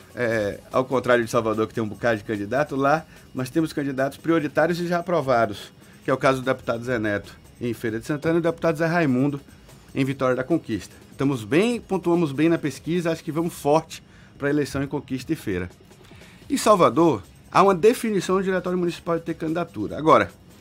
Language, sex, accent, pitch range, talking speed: Portuguese, male, Brazilian, 130-170 Hz, 200 wpm